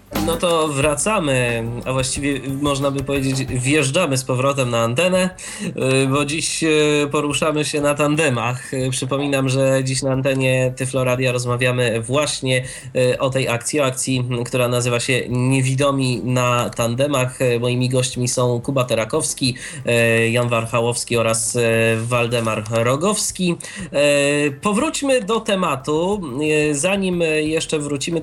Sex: male